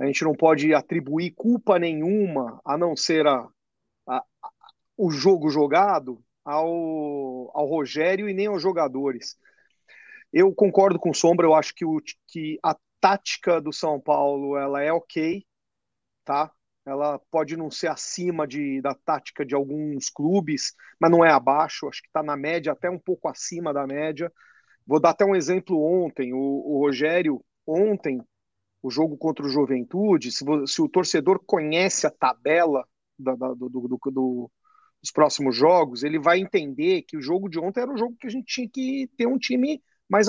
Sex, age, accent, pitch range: male, 40-59, Brazilian, 145-200 Hz